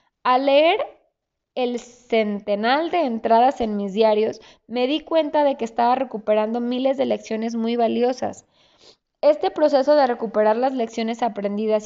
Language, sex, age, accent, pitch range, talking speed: Spanish, female, 20-39, Mexican, 220-275 Hz, 140 wpm